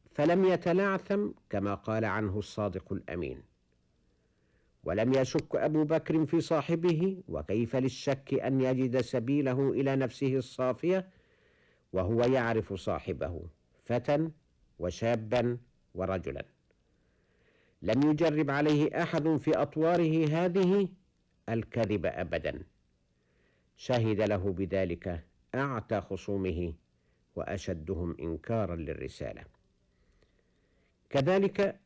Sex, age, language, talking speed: male, 60-79, Arabic, 85 wpm